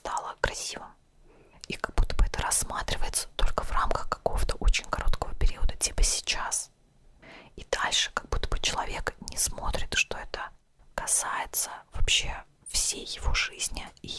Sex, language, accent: female, Russian, native